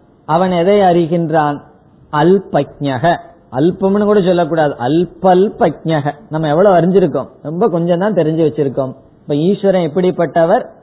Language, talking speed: Tamil, 85 wpm